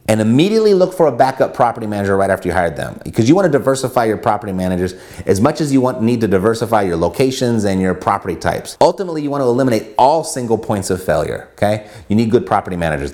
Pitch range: 100-135 Hz